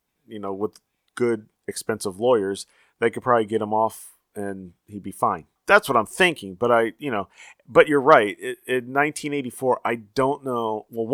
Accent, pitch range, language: American, 110-140 Hz, English